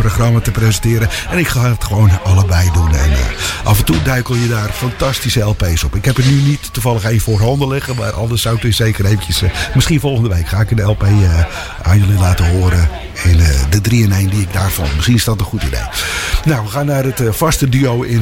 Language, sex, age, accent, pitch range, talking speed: English, male, 50-69, Dutch, 90-125 Hz, 245 wpm